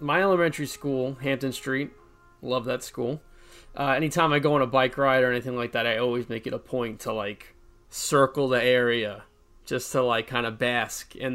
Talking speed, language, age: 200 wpm, English, 20-39